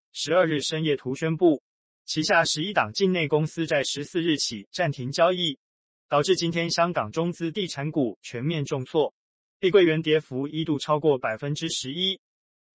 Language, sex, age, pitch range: Chinese, male, 20-39, 140-175 Hz